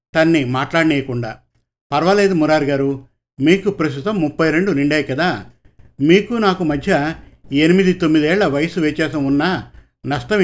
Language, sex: Telugu, male